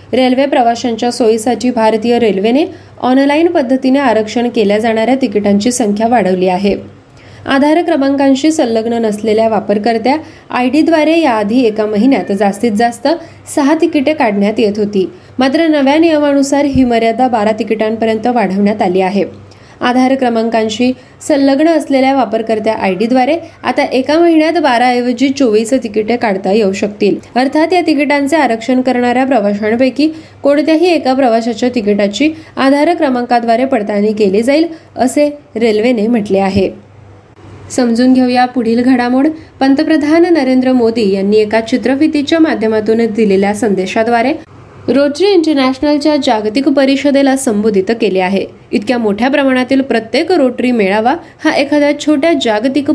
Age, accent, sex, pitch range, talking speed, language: 20-39, native, female, 220-285 Hz, 120 wpm, Marathi